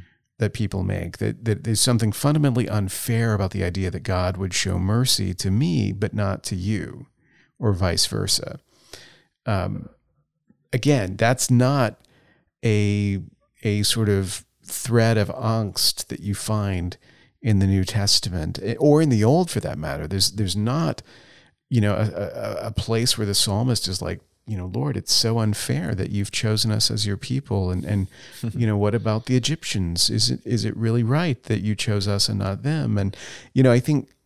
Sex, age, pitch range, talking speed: male, 40-59, 95-120 Hz, 180 wpm